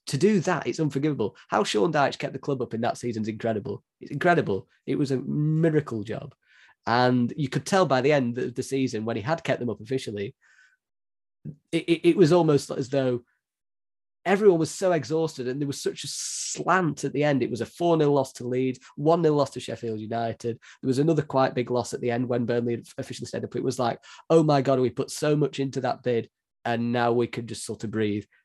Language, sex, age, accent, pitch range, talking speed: English, male, 20-39, British, 110-140 Hz, 225 wpm